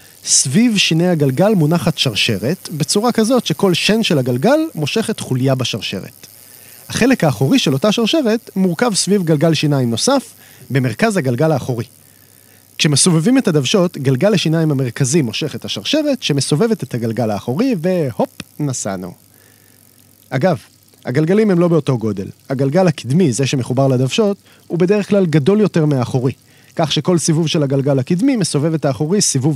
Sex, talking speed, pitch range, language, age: male, 140 wpm, 125-190 Hz, Hebrew, 30-49